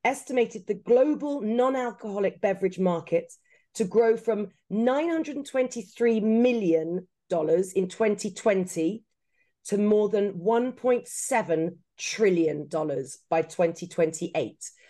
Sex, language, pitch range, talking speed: female, English, 175-255 Hz, 80 wpm